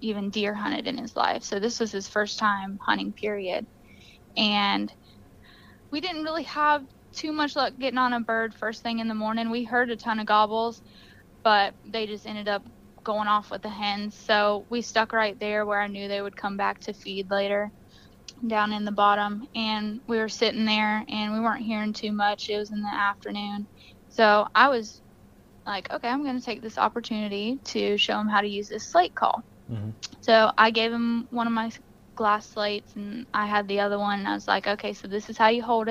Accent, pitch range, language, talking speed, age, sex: American, 210-265 Hz, English, 215 wpm, 10-29, female